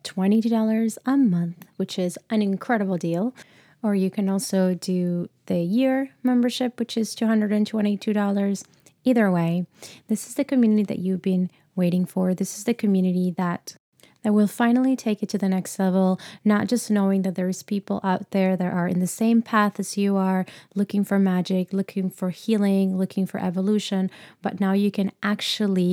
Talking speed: 170 wpm